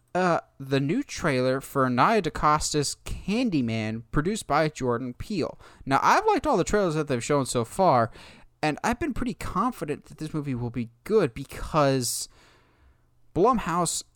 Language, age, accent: English, 20-39, American